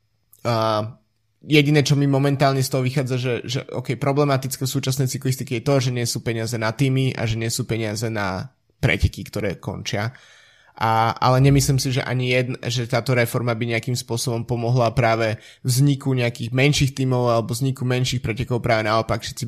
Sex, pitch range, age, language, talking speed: male, 115-135 Hz, 20-39, Slovak, 180 wpm